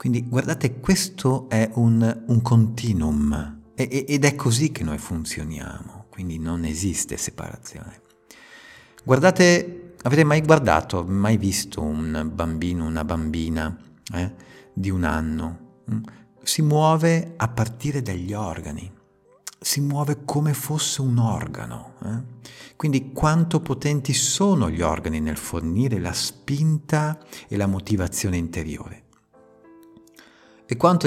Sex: male